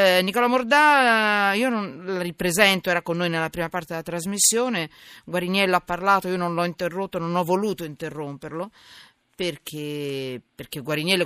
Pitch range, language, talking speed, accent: 145-190 Hz, Italian, 150 wpm, native